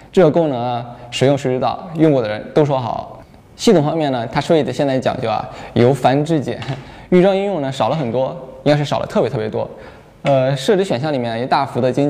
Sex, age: male, 20-39